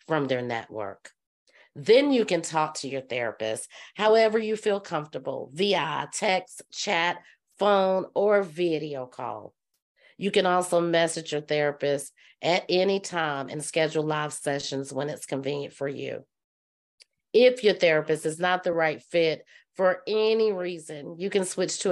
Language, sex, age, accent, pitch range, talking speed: English, female, 40-59, American, 150-190 Hz, 150 wpm